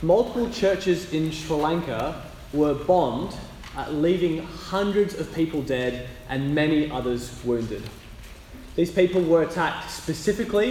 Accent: Australian